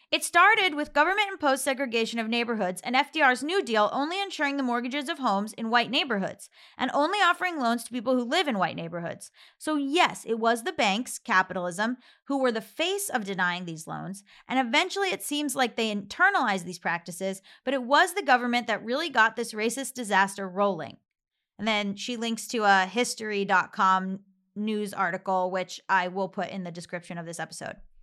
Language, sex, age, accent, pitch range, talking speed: English, female, 30-49, American, 205-285 Hz, 185 wpm